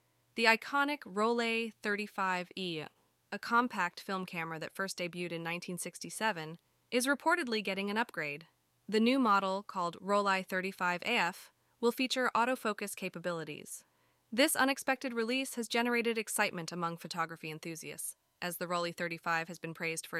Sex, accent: female, American